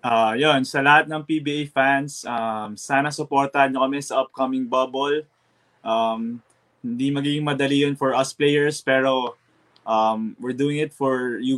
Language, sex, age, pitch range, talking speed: English, male, 20-39, 120-140 Hz, 155 wpm